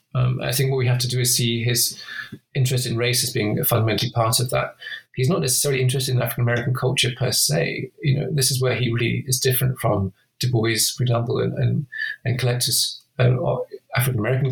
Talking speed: 205 wpm